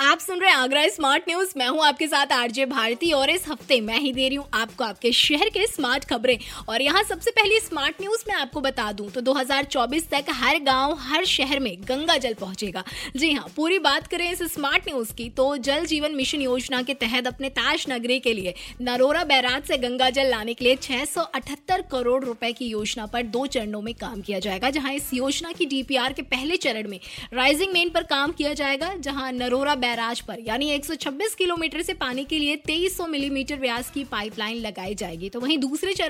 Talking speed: 175 wpm